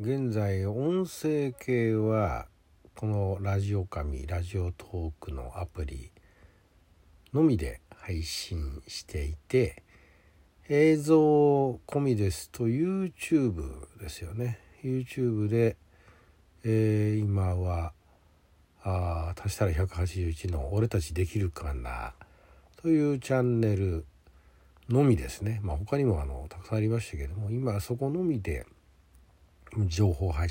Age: 60-79